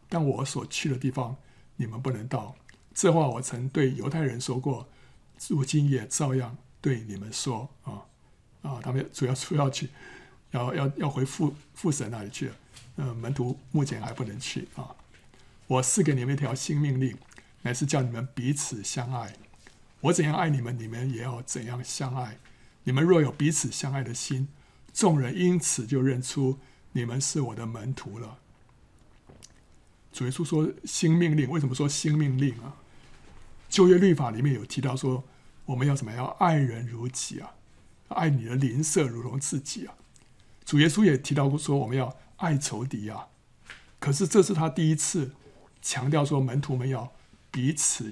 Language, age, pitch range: Chinese, 60-79, 125-150 Hz